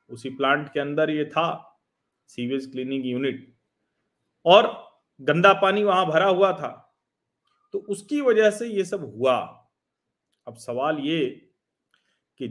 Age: 40-59